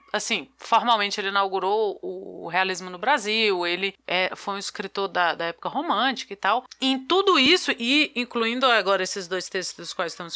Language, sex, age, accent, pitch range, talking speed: Portuguese, female, 20-39, Brazilian, 205-290 Hz, 180 wpm